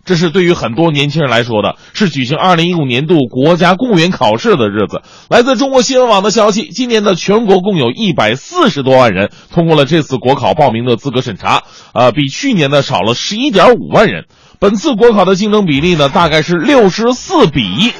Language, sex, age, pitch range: Chinese, male, 30-49, 150-230 Hz